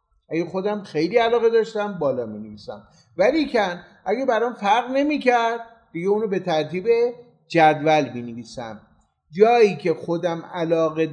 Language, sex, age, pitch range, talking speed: Persian, male, 50-69, 160-215 Hz, 135 wpm